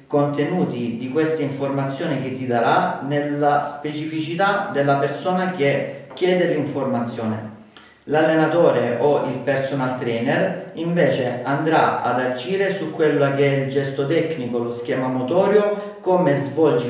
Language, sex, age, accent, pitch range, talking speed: Italian, male, 40-59, native, 135-170 Hz, 125 wpm